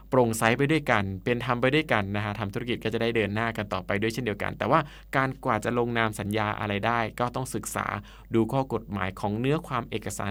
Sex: male